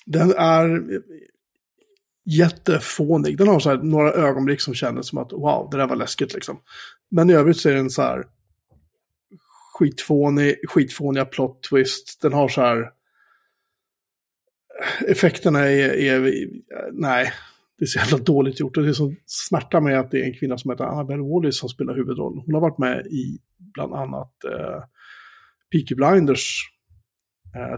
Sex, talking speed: male, 160 wpm